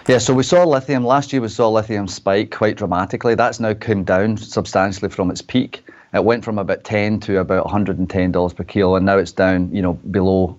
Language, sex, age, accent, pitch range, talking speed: English, male, 30-49, British, 95-110 Hz, 215 wpm